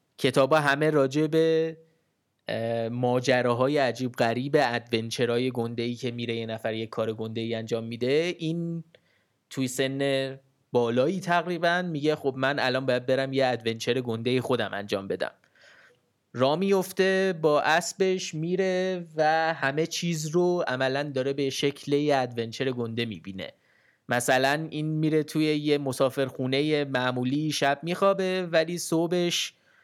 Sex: male